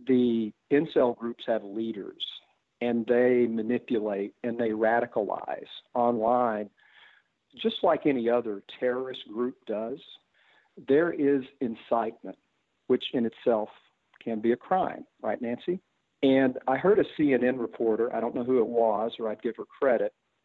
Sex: male